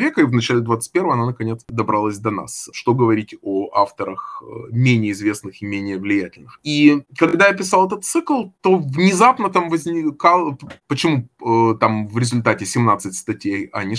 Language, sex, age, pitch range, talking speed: Russian, male, 20-39, 110-170 Hz, 160 wpm